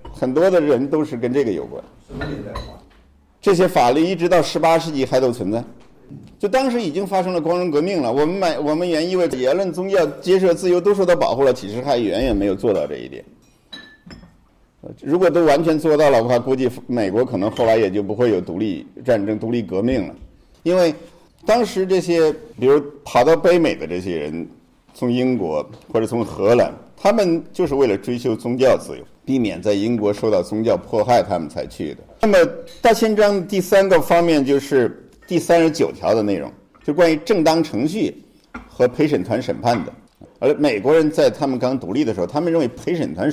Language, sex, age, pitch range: Chinese, male, 50-69, 125-175 Hz